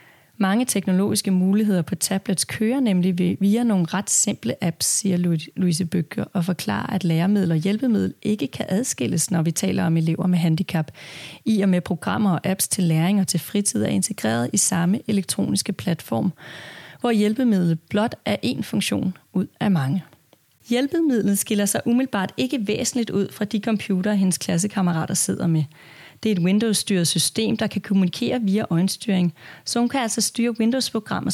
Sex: female